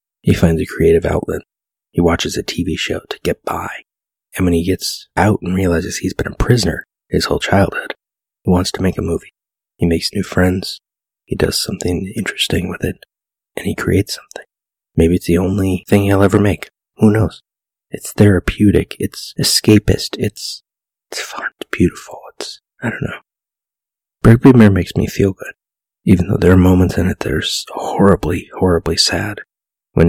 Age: 30-49